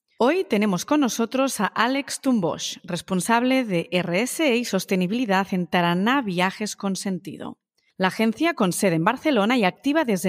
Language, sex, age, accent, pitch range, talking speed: Spanish, female, 30-49, Spanish, 185-245 Hz, 150 wpm